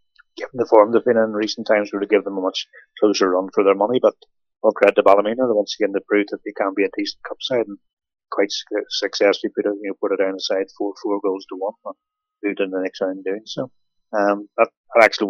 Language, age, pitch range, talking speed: English, 30-49, 95-115 Hz, 255 wpm